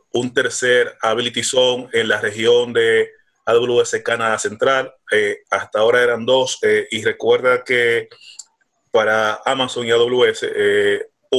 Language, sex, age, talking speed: Spanish, male, 30-49, 130 wpm